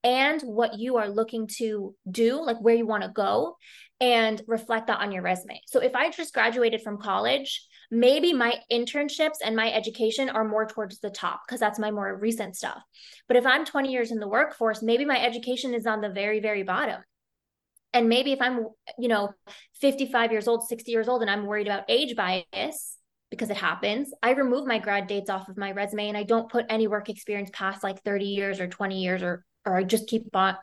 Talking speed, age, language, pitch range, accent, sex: 215 wpm, 20-39, English, 210-245 Hz, American, female